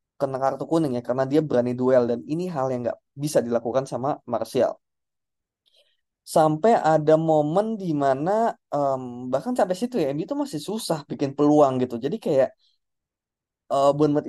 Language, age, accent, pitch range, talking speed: Indonesian, 20-39, native, 125-160 Hz, 150 wpm